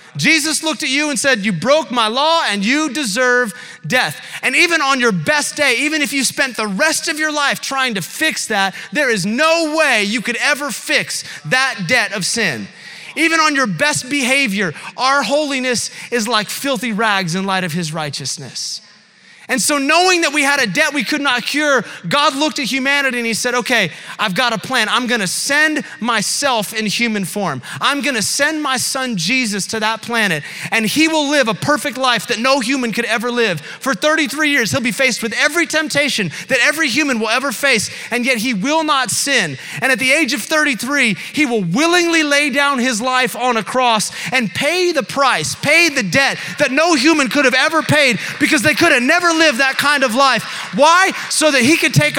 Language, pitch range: English, 220-295 Hz